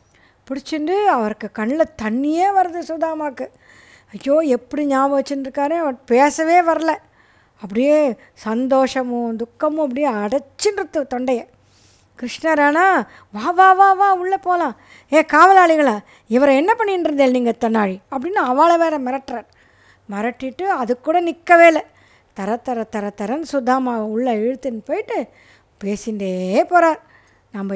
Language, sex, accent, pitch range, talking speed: Tamil, female, native, 230-320 Hz, 110 wpm